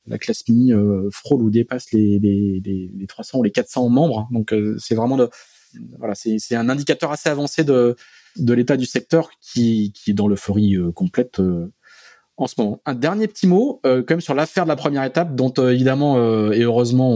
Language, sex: French, male